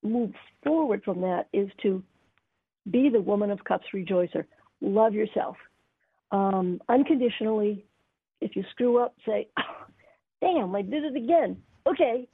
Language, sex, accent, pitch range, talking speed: English, female, American, 185-240 Hz, 130 wpm